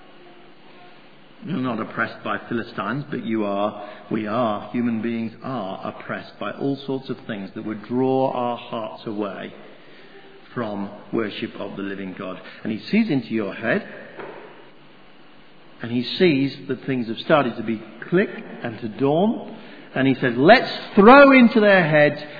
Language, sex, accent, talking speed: English, male, British, 155 wpm